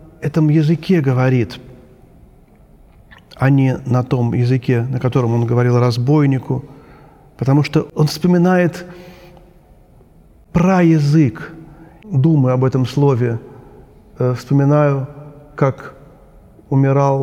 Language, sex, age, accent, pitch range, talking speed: Russian, male, 40-59, native, 125-150 Hz, 95 wpm